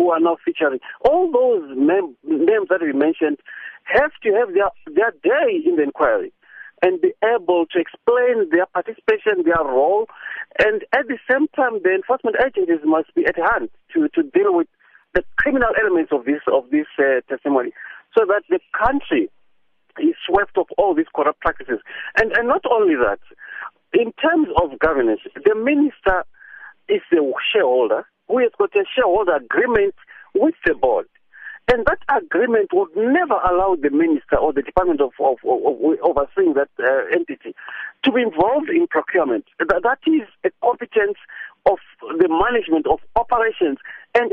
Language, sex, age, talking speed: English, male, 50-69, 170 wpm